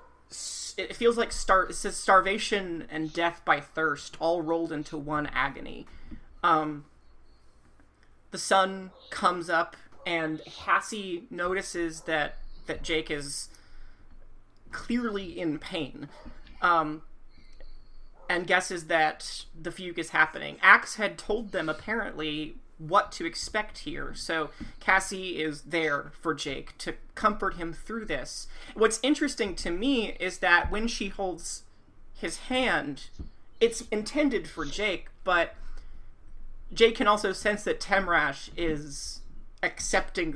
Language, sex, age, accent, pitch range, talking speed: English, male, 30-49, American, 160-215 Hz, 125 wpm